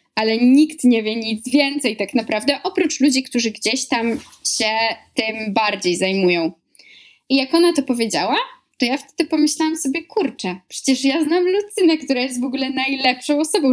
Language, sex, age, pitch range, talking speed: Polish, female, 20-39, 220-280 Hz, 165 wpm